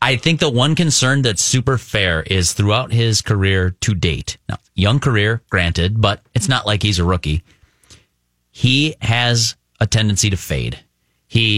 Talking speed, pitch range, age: 165 wpm, 100-130 Hz, 30-49